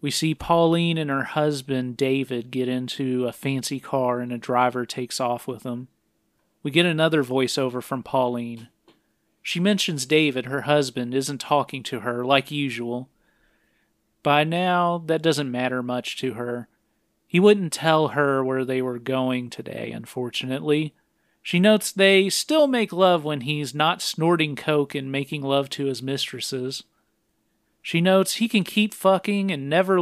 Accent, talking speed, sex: American, 160 wpm, male